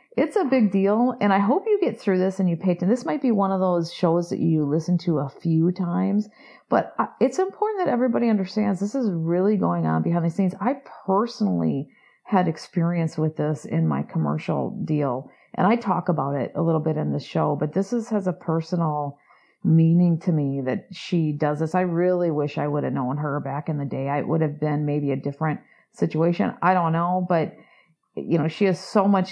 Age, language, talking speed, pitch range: 40-59, English, 220 wpm, 165-205 Hz